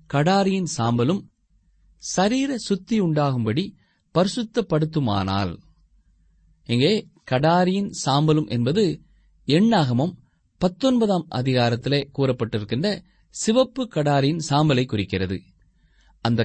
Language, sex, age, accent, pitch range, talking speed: Tamil, male, 30-49, native, 115-190 Hz, 65 wpm